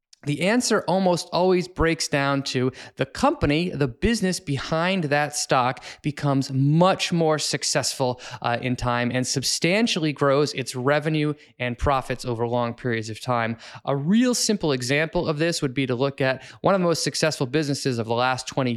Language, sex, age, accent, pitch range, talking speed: English, male, 20-39, American, 130-165 Hz, 175 wpm